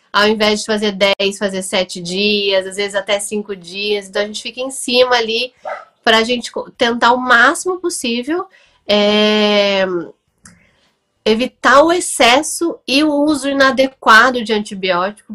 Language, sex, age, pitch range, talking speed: Portuguese, female, 10-29, 200-245 Hz, 140 wpm